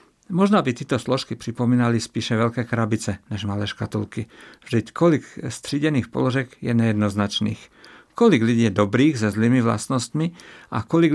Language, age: Czech, 50-69